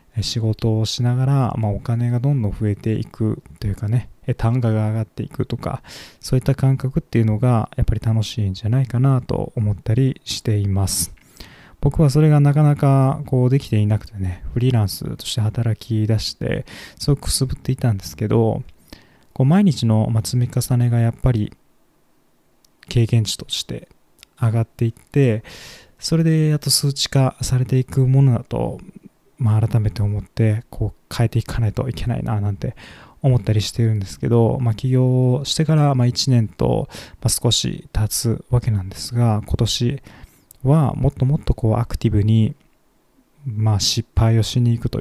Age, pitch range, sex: 20-39, 110-130 Hz, male